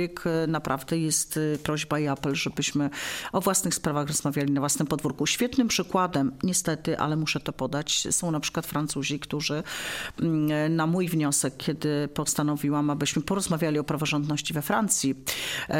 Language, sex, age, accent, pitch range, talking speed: Polish, female, 40-59, native, 145-165 Hz, 135 wpm